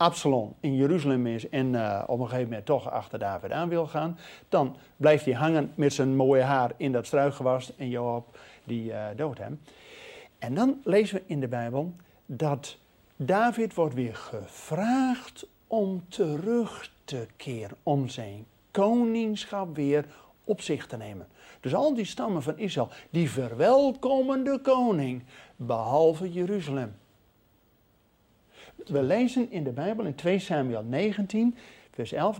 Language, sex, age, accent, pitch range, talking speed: Dutch, male, 50-69, Dutch, 135-225 Hz, 150 wpm